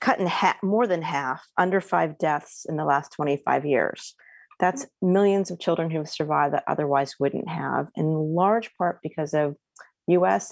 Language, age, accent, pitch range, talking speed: English, 40-59, American, 150-190 Hz, 175 wpm